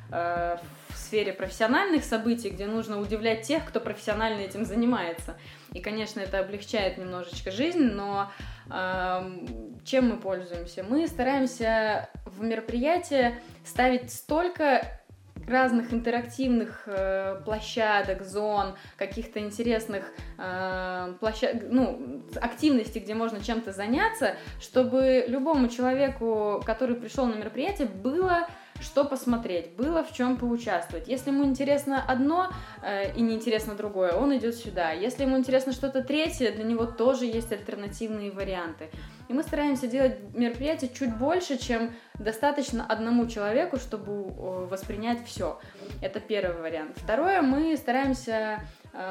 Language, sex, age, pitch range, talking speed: Russian, female, 20-39, 195-255 Hz, 125 wpm